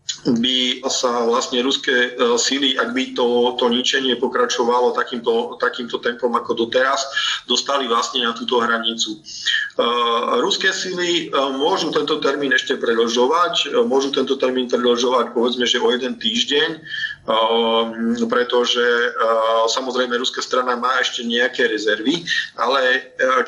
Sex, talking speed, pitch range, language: male, 135 wpm, 120-190 Hz, Slovak